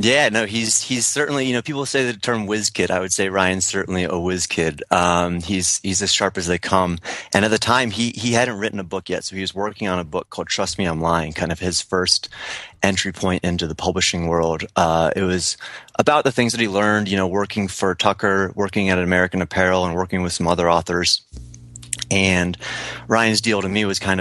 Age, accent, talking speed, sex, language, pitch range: 30-49, American, 230 wpm, male, English, 90-105 Hz